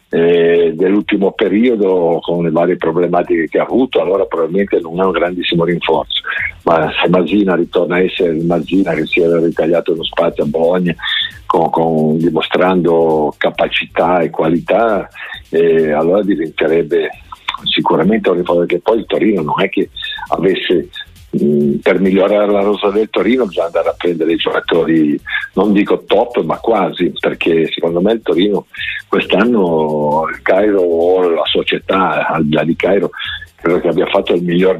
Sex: male